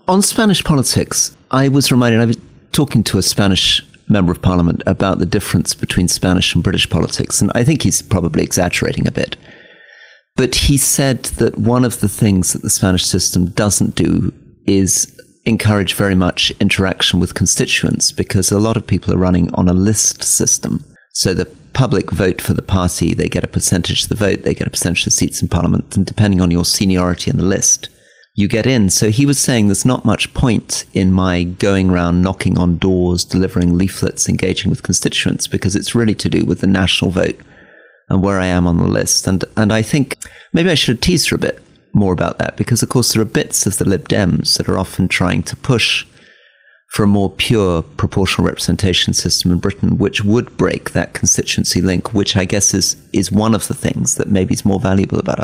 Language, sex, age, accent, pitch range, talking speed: English, male, 40-59, British, 90-110 Hz, 210 wpm